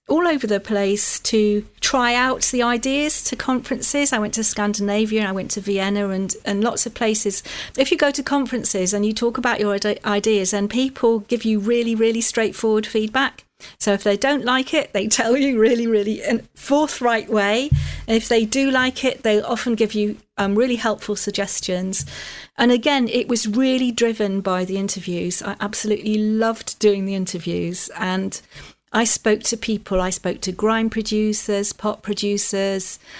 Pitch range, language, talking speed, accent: 200-235 Hz, English, 180 wpm, British